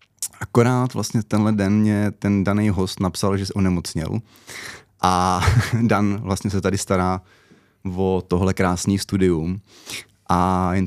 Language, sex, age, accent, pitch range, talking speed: Czech, male, 20-39, native, 95-105 Hz, 135 wpm